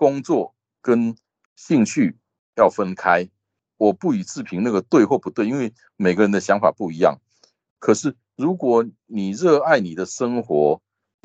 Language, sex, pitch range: Chinese, male, 90-130 Hz